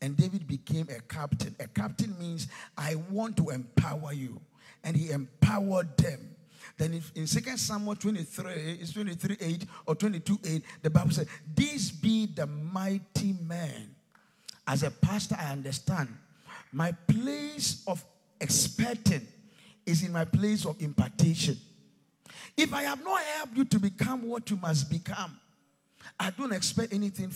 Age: 50-69